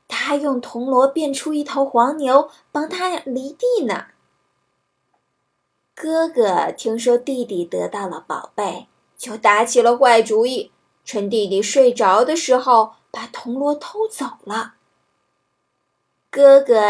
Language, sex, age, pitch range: Chinese, female, 20-39, 210-275 Hz